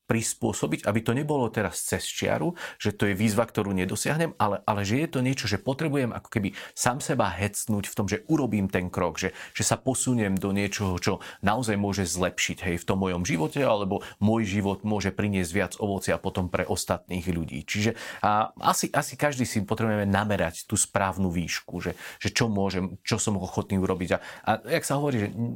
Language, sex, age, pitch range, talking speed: Slovak, male, 40-59, 95-115 Hz, 195 wpm